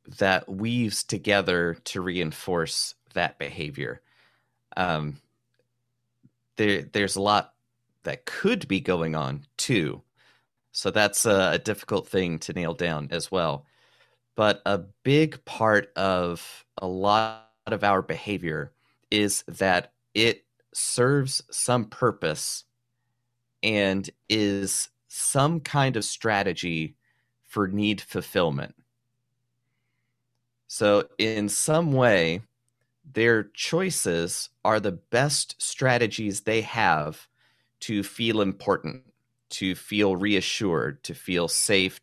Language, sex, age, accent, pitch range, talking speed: English, male, 30-49, American, 95-120 Hz, 105 wpm